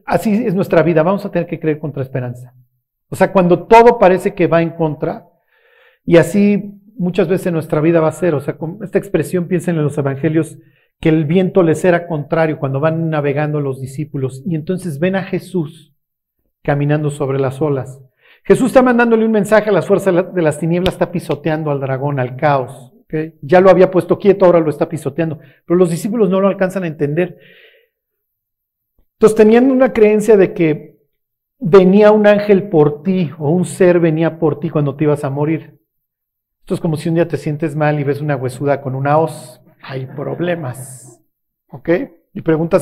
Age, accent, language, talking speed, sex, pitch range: 40-59, Mexican, Spanish, 190 wpm, male, 150-185 Hz